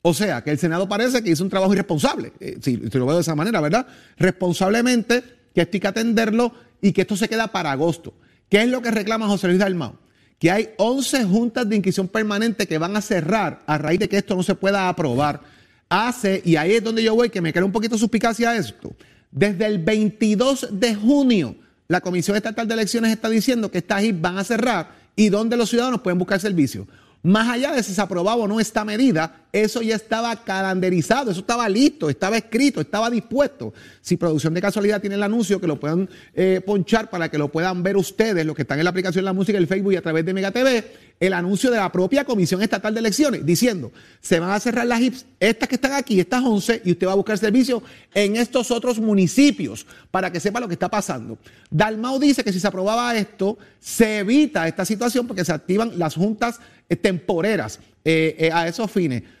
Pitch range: 180-230 Hz